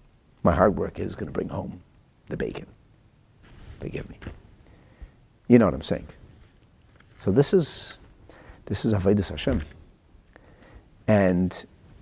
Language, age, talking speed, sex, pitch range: English, 50-69, 125 wpm, male, 85-110 Hz